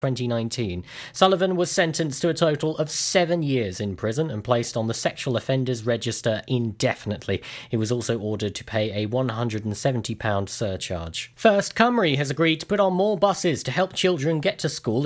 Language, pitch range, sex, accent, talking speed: English, 125-175 Hz, male, British, 175 wpm